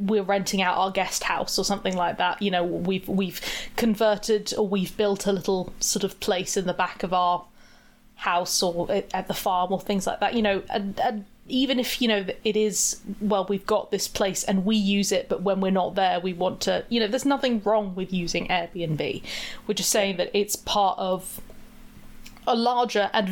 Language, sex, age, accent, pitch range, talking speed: English, female, 20-39, British, 185-220 Hz, 210 wpm